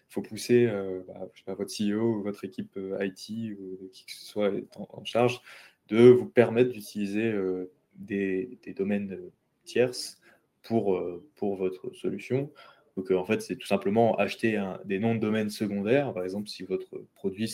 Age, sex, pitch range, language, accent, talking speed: 20-39, male, 95-115 Hz, French, French, 190 wpm